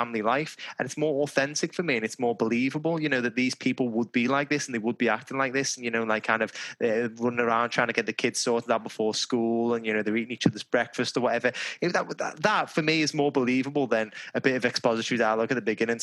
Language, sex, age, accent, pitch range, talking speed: English, male, 20-39, British, 115-140 Hz, 275 wpm